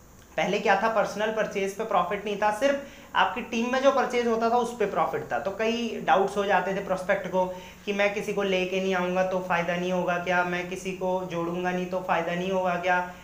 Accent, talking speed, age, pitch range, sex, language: native, 230 wpm, 30-49, 185-225 Hz, male, Hindi